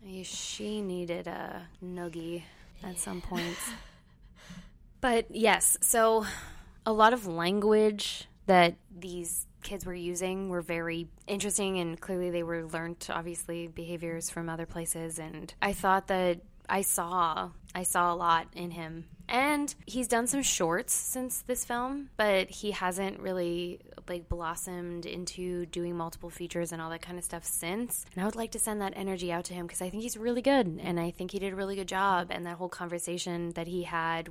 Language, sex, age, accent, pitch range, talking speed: English, female, 20-39, American, 170-195 Hz, 180 wpm